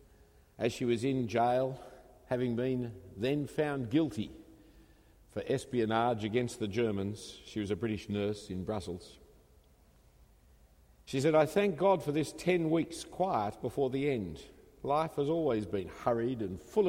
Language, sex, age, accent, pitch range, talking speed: English, male, 50-69, Australian, 95-145 Hz, 150 wpm